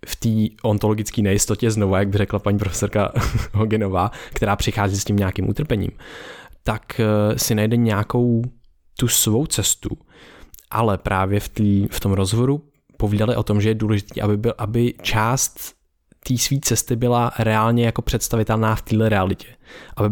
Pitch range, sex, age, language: 100-115 Hz, male, 20-39, Czech